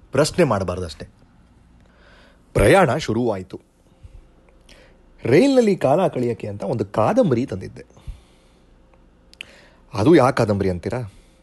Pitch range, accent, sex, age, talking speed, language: 90-125 Hz, native, male, 30-49, 70 wpm, Kannada